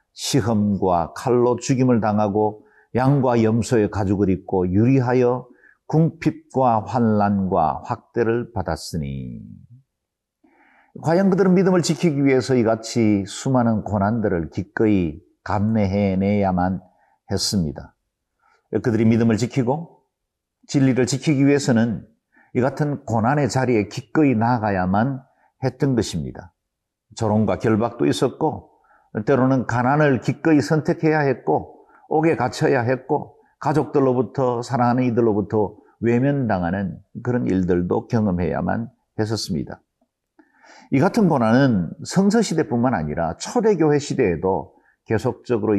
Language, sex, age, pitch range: Korean, male, 50-69, 100-135 Hz